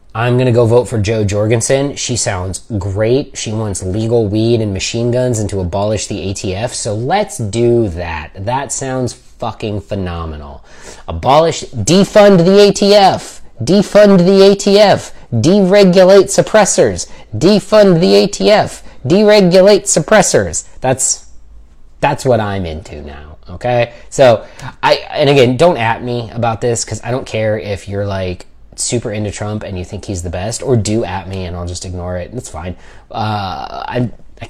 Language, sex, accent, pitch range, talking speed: English, male, American, 100-160 Hz, 155 wpm